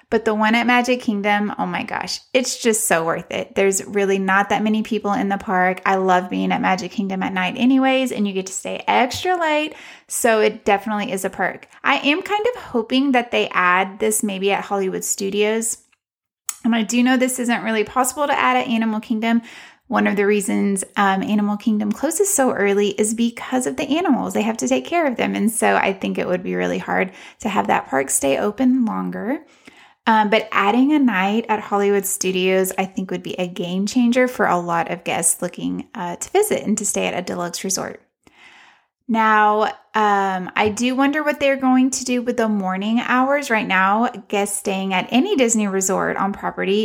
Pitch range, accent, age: 190-245 Hz, American, 20-39